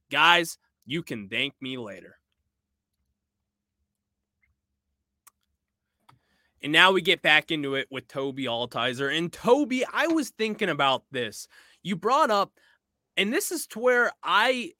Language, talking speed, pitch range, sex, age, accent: English, 130 wpm, 120-180 Hz, male, 20-39, American